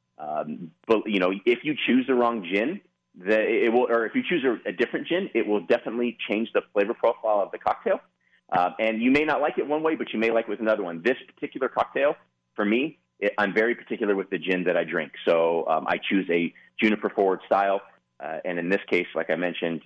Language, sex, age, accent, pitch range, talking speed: English, male, 30-49, American, 90-115 Hz, 240 wpm